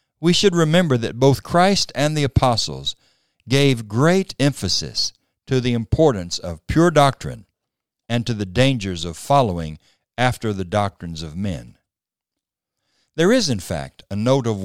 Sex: male